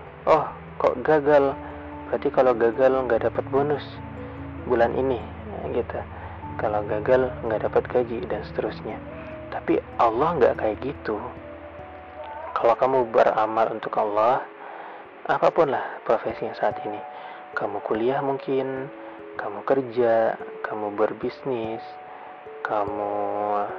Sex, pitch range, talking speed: male, 100-135 Hz, 110 wpm